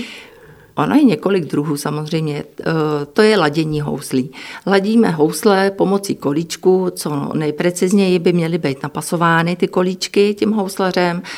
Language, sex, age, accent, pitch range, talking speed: Czech, female, 50-69, native, 150-180 Hz, 120 wpm